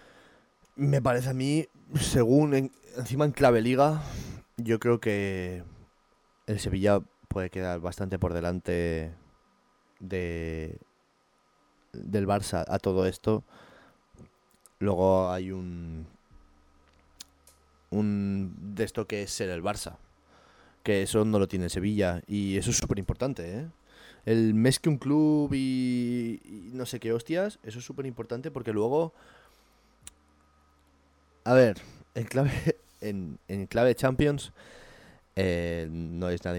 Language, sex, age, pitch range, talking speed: Spanish, male, 20-39, 90-120 Hz, 130 wpm